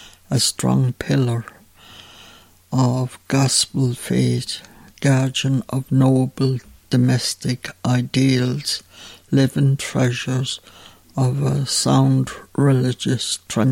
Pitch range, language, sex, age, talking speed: 100-135 Hz, English, male, 60-79, 75 wpm